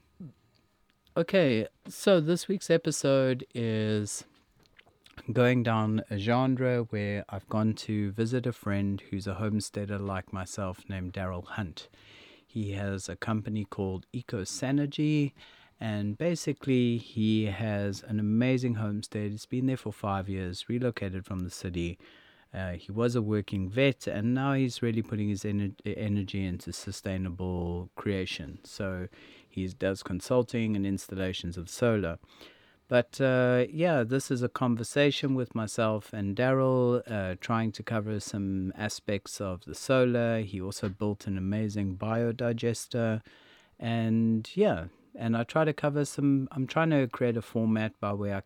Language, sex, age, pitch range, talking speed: English, male, 30-49, 100-125 Hz, 140 wpm